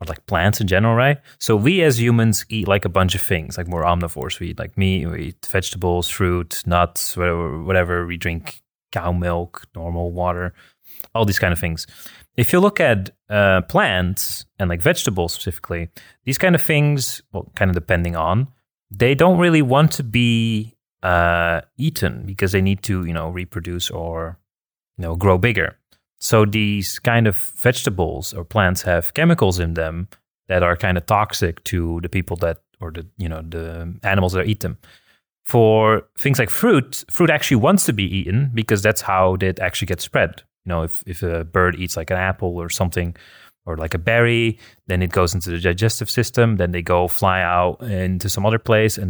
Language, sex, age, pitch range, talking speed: English, male, 30-49, 85-110 Hz, 195 wpm